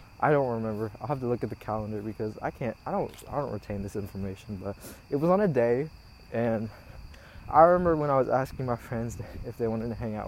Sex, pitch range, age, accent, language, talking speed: male, 105-130 Hz, 20-39, American, English, 240 wpm